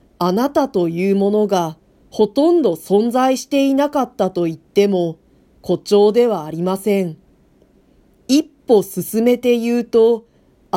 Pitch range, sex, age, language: 175-235 Hz, female, 40-59, Japanese